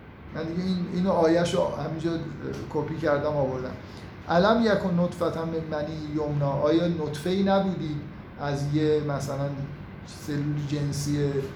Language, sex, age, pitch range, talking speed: Persian, male, 50-69, 140-180 Hz, 110 wpm